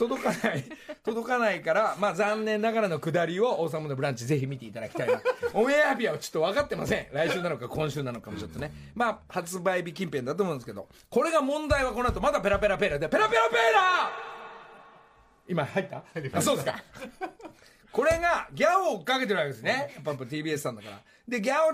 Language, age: Japanese, 40-59